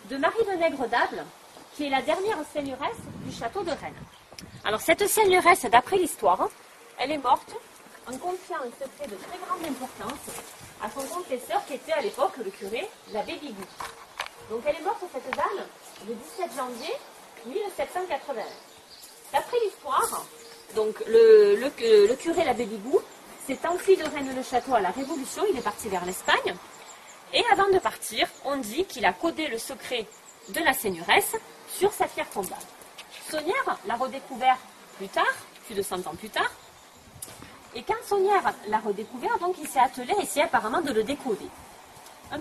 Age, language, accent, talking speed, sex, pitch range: 30-49, French, French, 165 wpm, female, 255-375 Hz